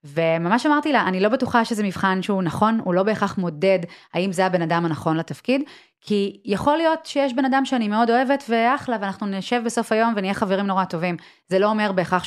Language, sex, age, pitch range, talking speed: Hebrew, female, 30-49, 165-230 Hz, 205 wpm